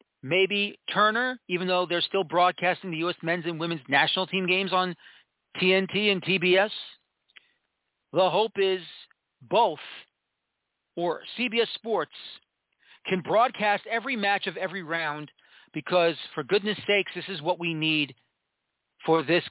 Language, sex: English, male